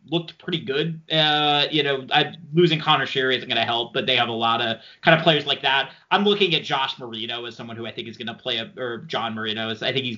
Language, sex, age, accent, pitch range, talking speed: English, male, 30-49, American, 135-185 Hz, 275 wpm